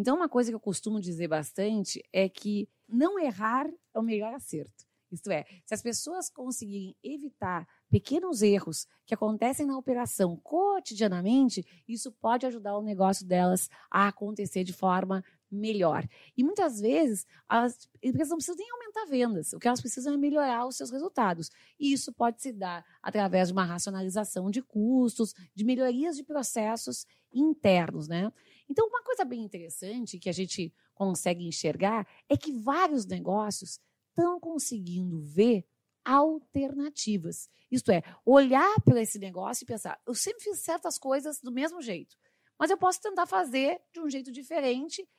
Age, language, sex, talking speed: 30-49, Portuguese, female, 160 wpm